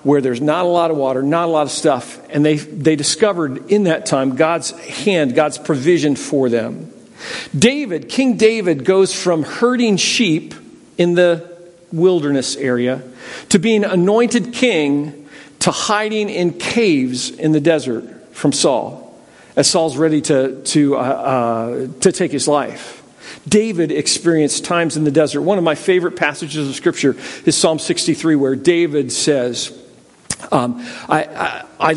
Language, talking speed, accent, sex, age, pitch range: English, 150 wpm, American, male, 50-69, 145-195 Hz